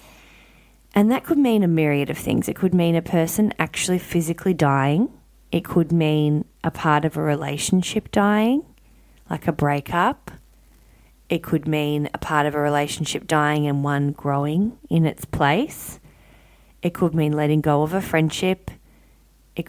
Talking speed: 160 wpm